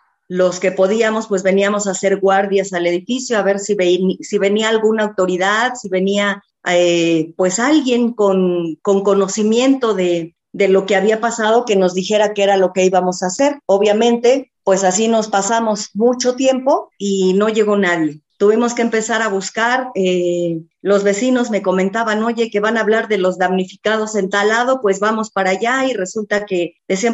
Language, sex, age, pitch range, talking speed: English, female, 40-59, 185-230 Hz, 175 wpm